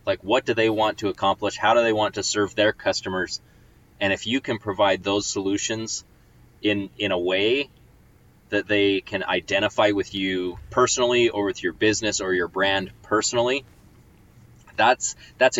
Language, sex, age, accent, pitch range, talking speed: English, male, 20-39, American, 95-115 Hz, 165 wpm